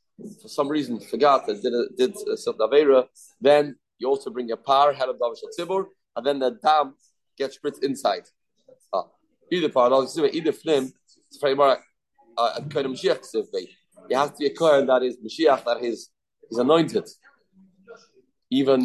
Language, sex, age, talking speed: English, male, 30-49, 145 wpm